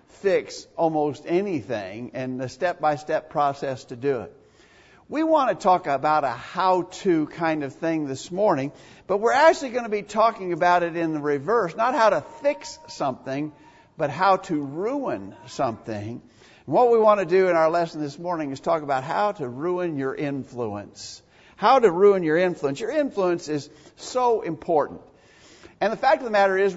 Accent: American